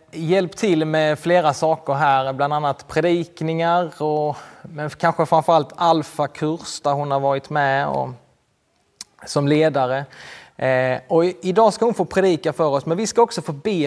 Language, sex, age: Swedish, male, 20-39